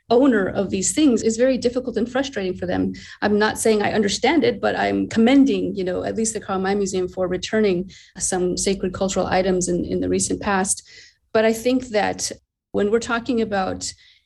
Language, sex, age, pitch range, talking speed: English, female, 30-49, 190-225 Hz, 200 wpm